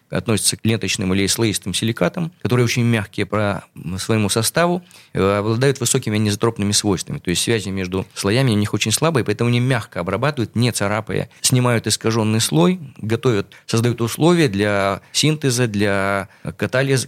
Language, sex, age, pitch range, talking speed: Russian, male, 20-39, 100-125 Hz, 145 wpm